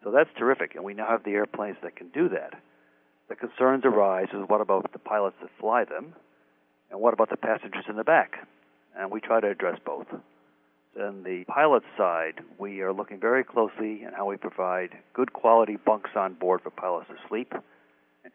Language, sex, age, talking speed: English, male, 60-79, 200 wpm